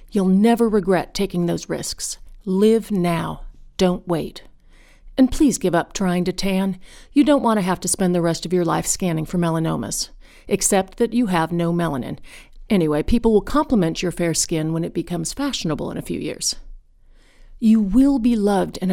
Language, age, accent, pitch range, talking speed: English, 50-69, American, 175-225 Hz, 180 wpm